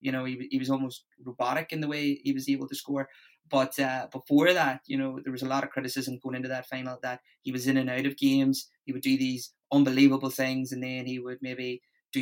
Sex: male